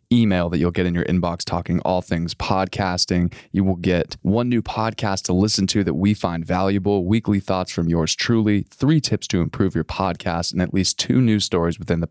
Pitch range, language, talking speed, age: 90-110 Hz, English, 215 wpm, 20-39